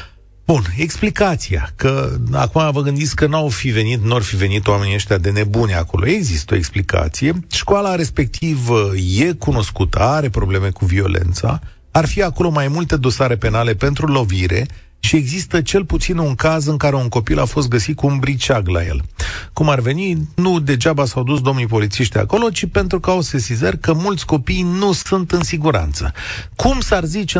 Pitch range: 105-155 Hz